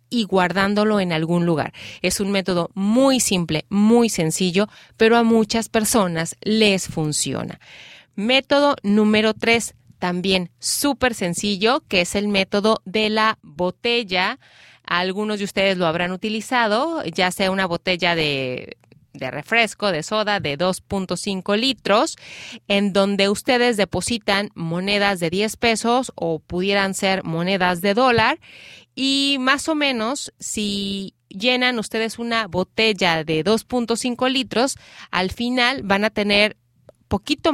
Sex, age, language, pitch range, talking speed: female, 30-49, Spanish, 185-235 Hz, 130 wpm